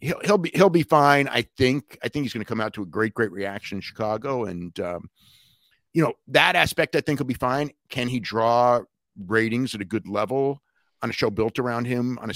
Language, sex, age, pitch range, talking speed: English, male, 50-69, 110-150 Hz, 240 wpm